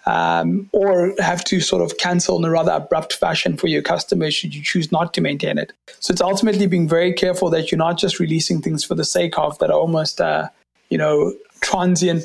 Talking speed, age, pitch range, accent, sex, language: 220 wpm, 20-39, 160-190 Hz, South African, male, English